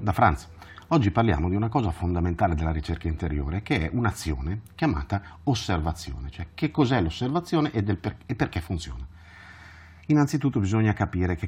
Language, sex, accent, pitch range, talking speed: Italian, male, native, 80-105 Hz, 155 wpm